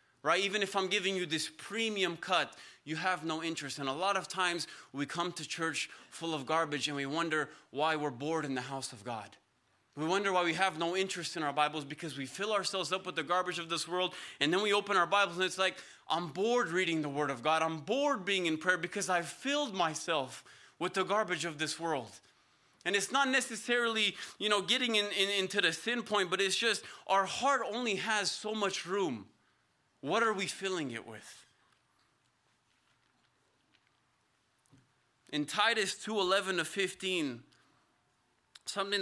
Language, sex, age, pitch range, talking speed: English, male, 20-39, 160-200 Hz, 190 wpm